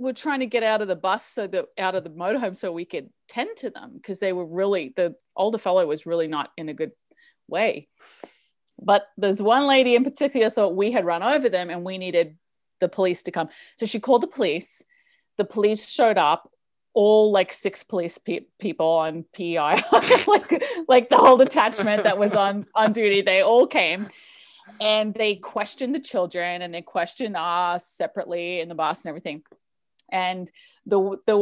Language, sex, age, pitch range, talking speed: English, female, 30-49, 170-235 Hz, 190 wpm